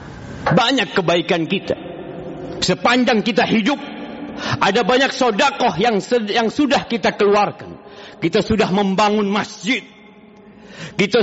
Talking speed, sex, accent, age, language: 105 wpm, male, native, 50-69, Indonesian